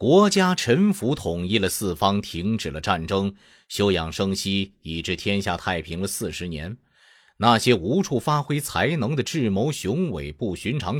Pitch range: 90-135 Hz